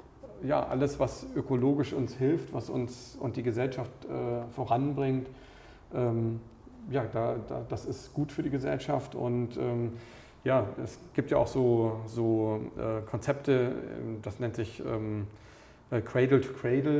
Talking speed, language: 140 wpm, German